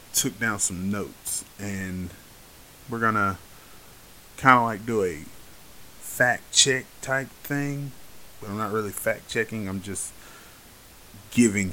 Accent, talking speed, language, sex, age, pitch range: American, 135 wpm, English, male, 30-49, 100-125 Hz